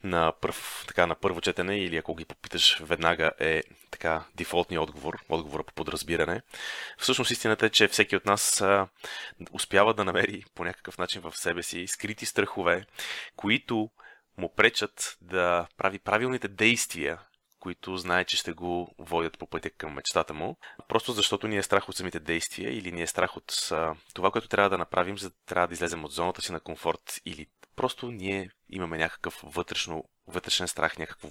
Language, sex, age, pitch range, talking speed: Bulgarian, male, 30-49, 85-100 Hz, 175 wpm